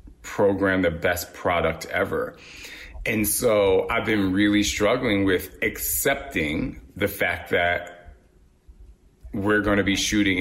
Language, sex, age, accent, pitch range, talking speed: English, male, 30-49, American, 85-105 Hz, 115 wpm